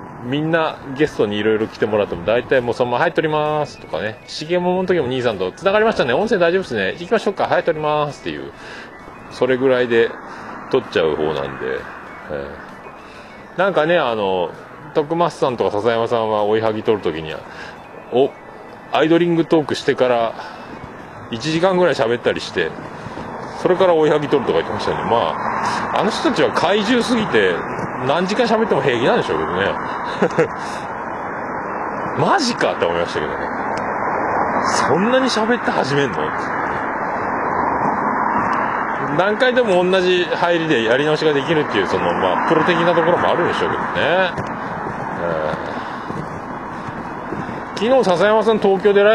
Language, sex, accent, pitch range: Japanese, male, native, 120-195 Hz